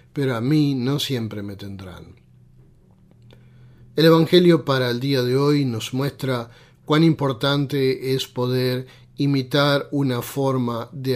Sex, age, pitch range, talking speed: male, 40-59, 120-145 Hz, 130 wpm